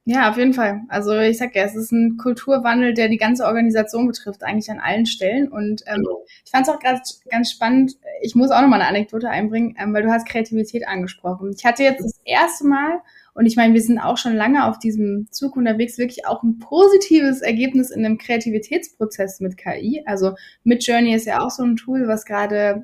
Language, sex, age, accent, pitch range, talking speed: German, female, 10-29, German, 220-265 Hz, 215 wpm